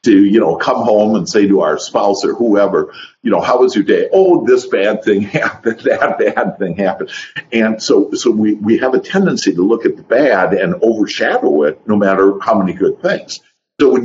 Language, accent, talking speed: English, American, 220 wpm